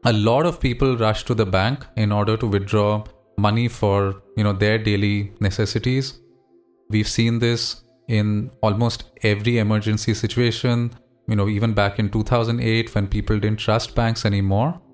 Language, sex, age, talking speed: English, male, 30-49, 155 wpm